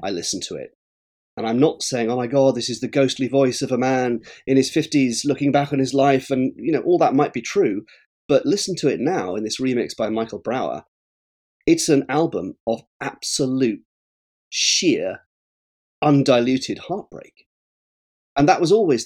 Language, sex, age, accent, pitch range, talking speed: English, male, 30-49, British, 105-150 Hz, 185 wpm